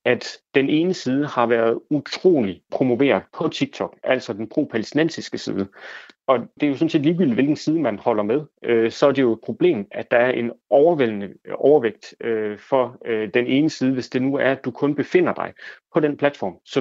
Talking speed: 200 wpm